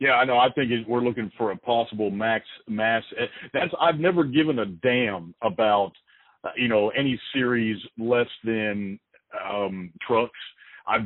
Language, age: English, 50-69